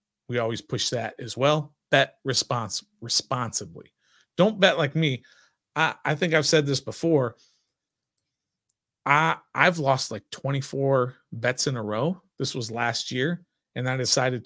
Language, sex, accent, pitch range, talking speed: English, male, American, 125-165 Hz, 150 wpm